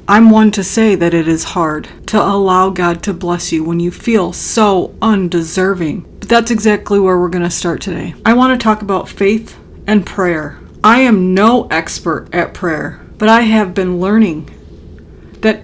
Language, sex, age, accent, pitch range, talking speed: English, female, 40-59, American, 185-230 Hz, 185 wpm